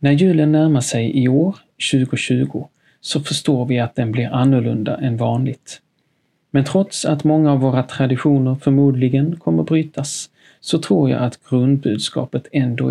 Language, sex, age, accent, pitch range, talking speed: Swedish, male, 40-59, native, 130-155 Hz, 150 wpm